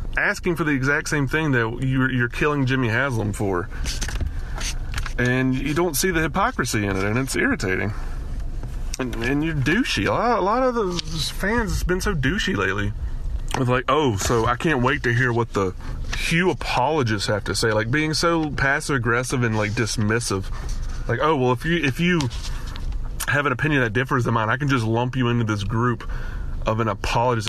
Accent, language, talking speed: American, English, 195 wpm